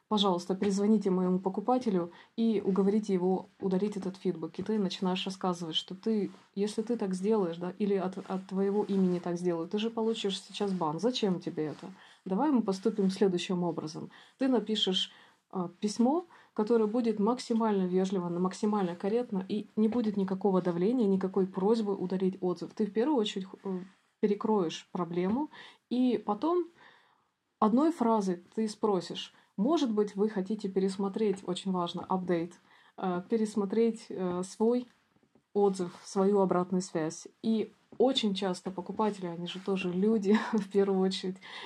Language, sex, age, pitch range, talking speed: Russian, female, 20-39, 185-220 Hz, 140 wpm